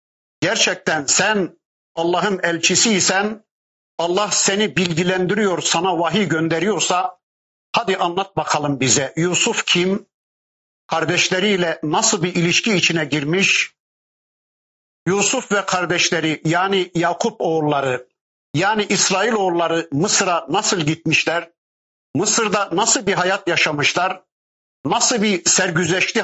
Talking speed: 95 wpm